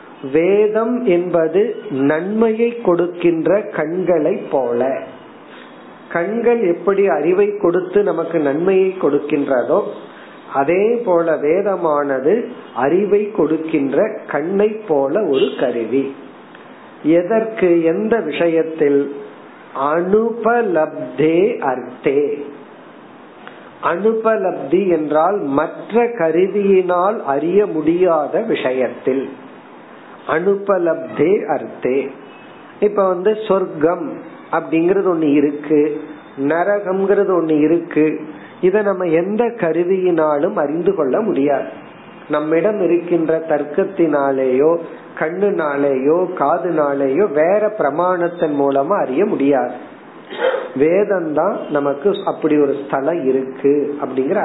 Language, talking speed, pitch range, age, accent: Tamil, 75 wpm, 155-205 Hz, 50-69, native